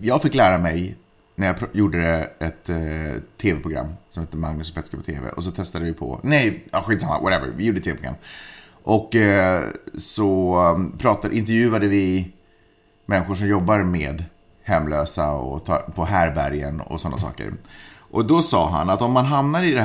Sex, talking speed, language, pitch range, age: male, 165 wpm, Swedish, 85-110 Hz, 30-49